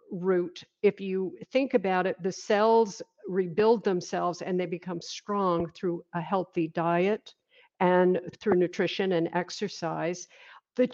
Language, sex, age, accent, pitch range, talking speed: English, female, 50-69, American, 175-210 Hz, 130 wpm